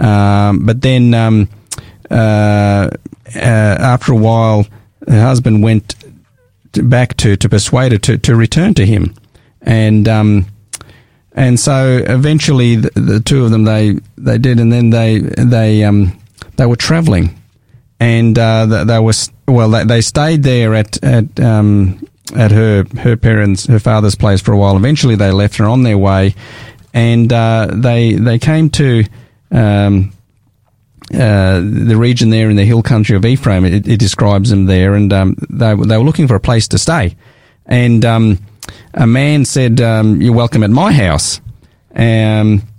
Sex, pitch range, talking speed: male, 105-120 Hz, 165 wpm